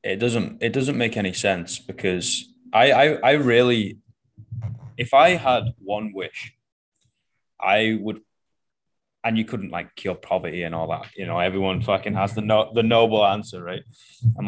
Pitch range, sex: 95-115 Hz, male